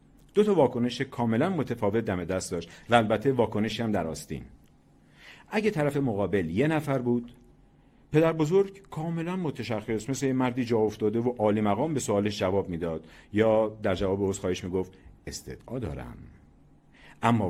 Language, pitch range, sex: Persian, 105-150 Hz, male